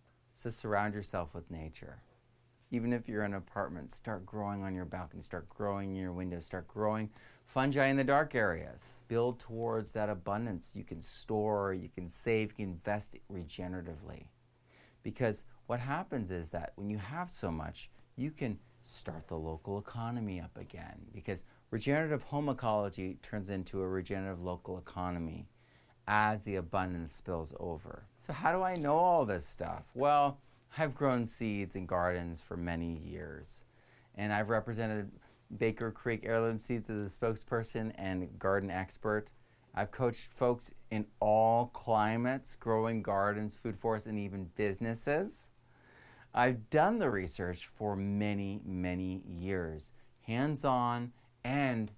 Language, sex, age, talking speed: English, male, 40-59, 150 wpm